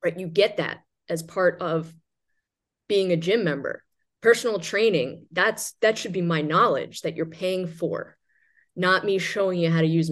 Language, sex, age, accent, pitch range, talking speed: English, female, 20-39, American, 170-215 Hz, 180 wpm